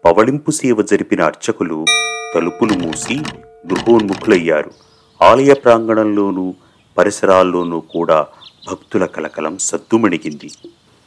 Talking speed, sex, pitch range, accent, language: 75 wpm, male, 85-110 Hz, native, Telugu